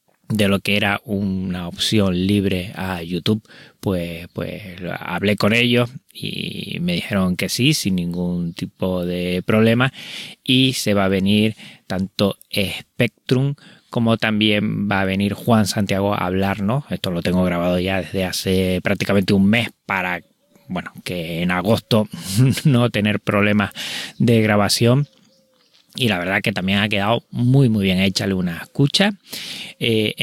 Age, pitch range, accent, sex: 20-39, 95-115 Hz, Spanish, male